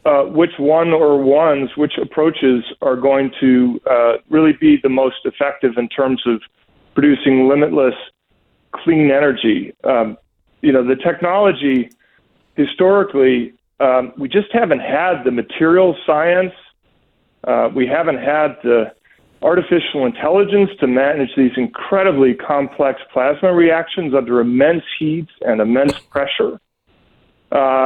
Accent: American